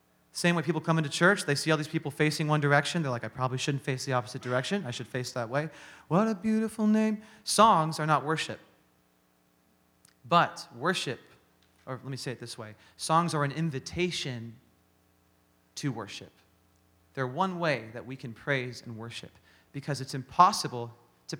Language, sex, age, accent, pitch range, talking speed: English, male, 30-49, American, 95-145 Hz, 180 wpm